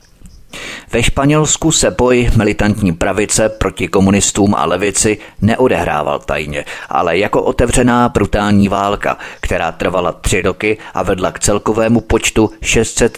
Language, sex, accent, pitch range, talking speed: Czech, male, native, 95-115 Hz, 125 wpm